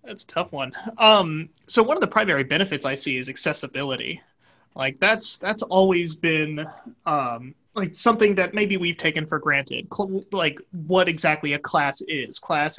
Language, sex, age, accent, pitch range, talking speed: English, male, 30-49, American, 140-175 Hz, 170 wpm